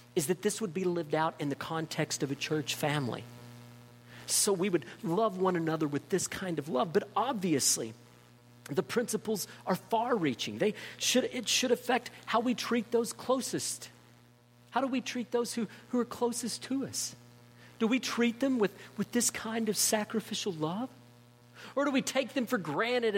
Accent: American